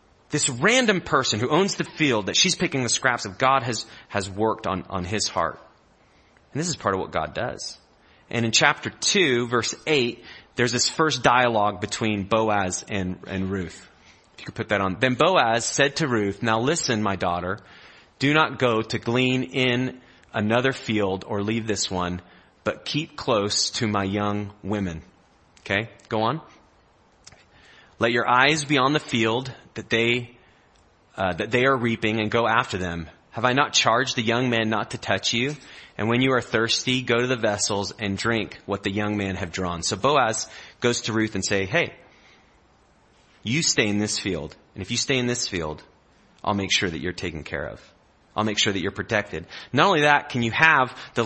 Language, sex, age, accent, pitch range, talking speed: English, male, 30-49, American, 100-130 Hz, 195 wpm